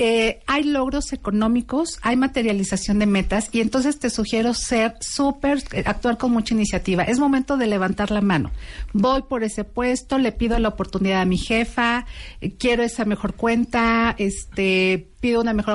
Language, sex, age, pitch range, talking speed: Spanish, female, 50-69, 195-235 Hz, 170 wpm